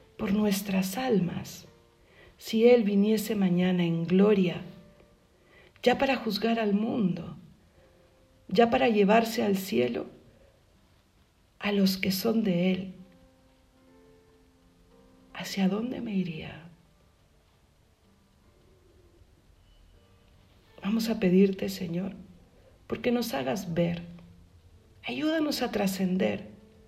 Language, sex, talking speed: Spanish, female, 90 wpm